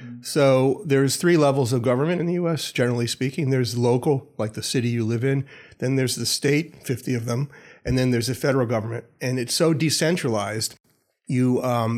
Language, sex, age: English, male, 40-59